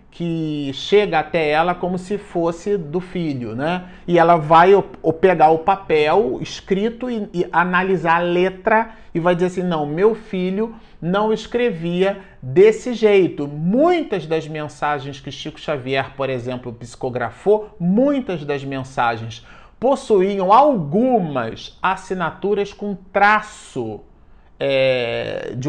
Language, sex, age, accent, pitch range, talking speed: Portuguese, male, 40-59, Brazilian, 145-205 Hz, 120 wpm